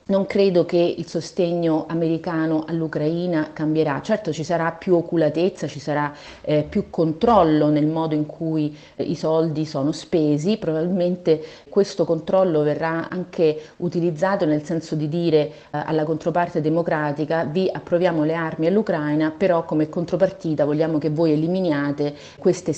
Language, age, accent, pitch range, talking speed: Italian, 30-49, native, 145-170 Hz, 140 wpm